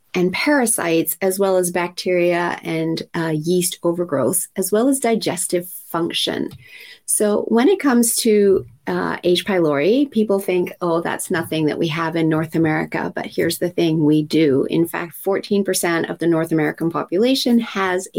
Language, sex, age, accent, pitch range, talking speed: English, female, 30-49, American, 165-195 Hz, 160 wpm